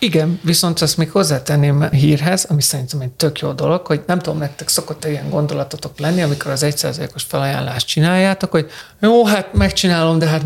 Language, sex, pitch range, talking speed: Hungarian, male, 145-175 Hz, 180 wpm